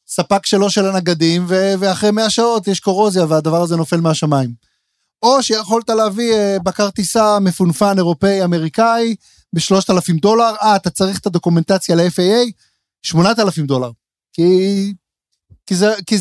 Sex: male